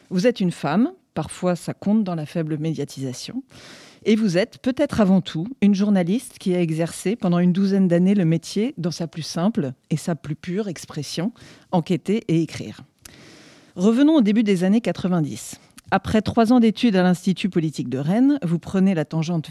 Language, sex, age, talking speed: French, female, 40-59, 180 wpm